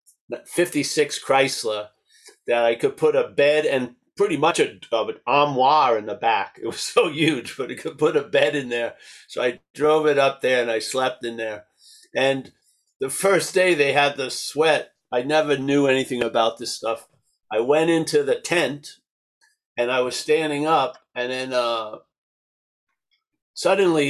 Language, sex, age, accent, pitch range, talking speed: English, male, 50-69, American, 130-175 Hz, 170 wpm